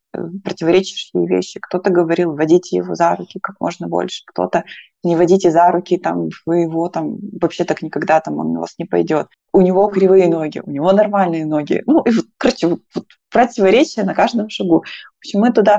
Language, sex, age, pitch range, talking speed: Russian, female, 20-39, 170-200 Hz, 185 wpm